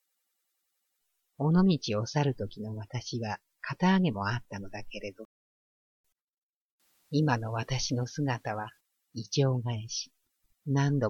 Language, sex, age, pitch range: Japanese, female, 50-69, 105-145 Hz